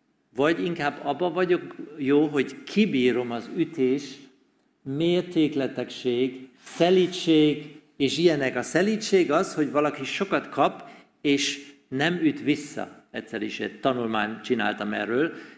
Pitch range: 135-195 Hz